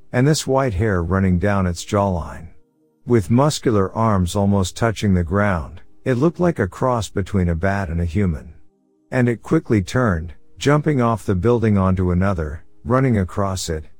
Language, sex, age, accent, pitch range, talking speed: English, male, 50-69, American, 90-115 Hz, 165 wpm